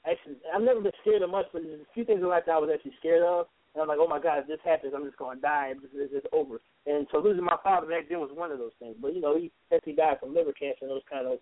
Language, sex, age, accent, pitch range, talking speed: English, male, 20-39, American, 140-215 Hz, 330 wpm